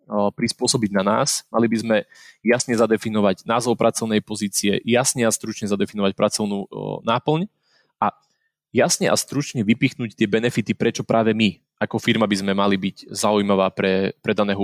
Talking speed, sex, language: 150 wpm, male, Slovak